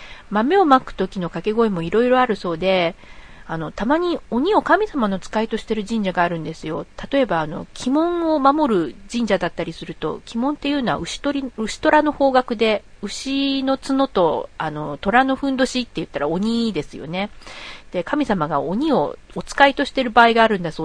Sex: female